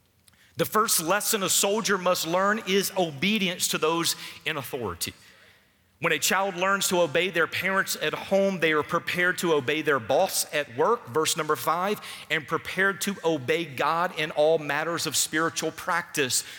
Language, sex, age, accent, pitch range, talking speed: English, male, 40-59, American, 165-225 Hz, 165 wpm